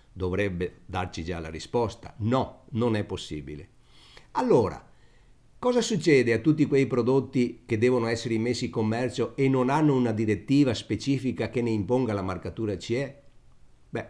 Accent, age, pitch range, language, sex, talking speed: native, 50-69, 105-135 Hz, Italian, male, 150 wpm